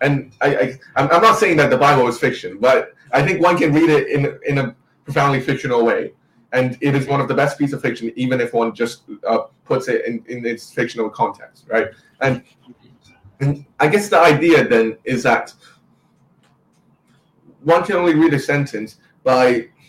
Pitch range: 130-160 Hz